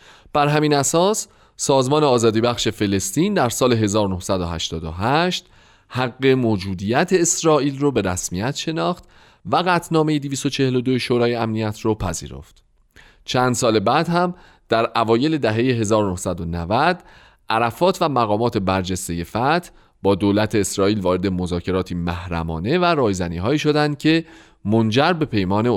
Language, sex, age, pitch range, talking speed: Persian, male, 40-59, 100-155 Hz, 115 wpm